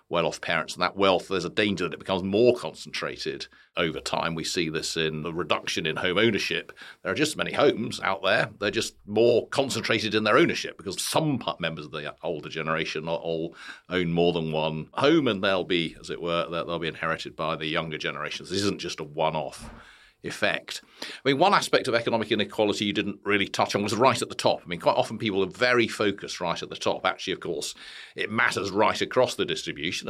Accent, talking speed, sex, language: British, 220 wpm, male, English